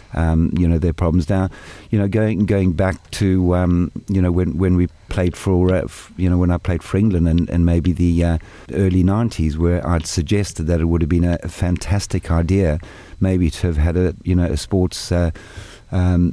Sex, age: male, 50-69